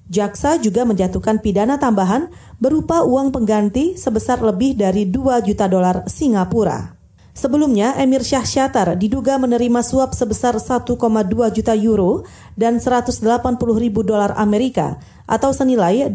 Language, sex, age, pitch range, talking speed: Indonesian, female, 30-49, 210-260 Hz, 120 wpm